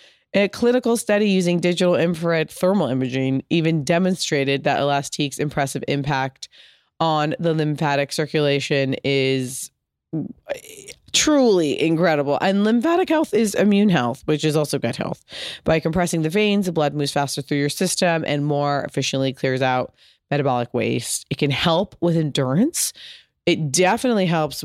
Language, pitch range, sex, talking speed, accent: English, 145-190 Hz, female, 140 wpm, American